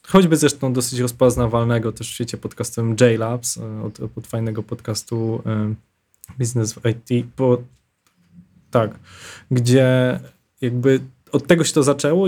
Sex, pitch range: male, 115-145 Hz